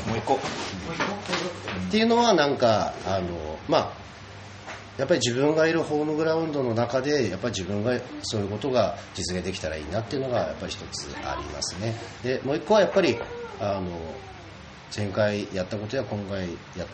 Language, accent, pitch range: Japanese, native, 95-120 Hz